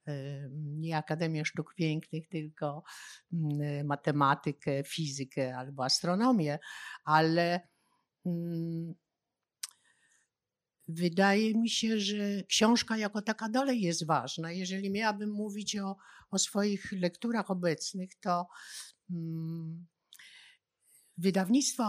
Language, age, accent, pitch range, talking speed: Polish, 50-69, native, 155-205 Hz, 80 wpm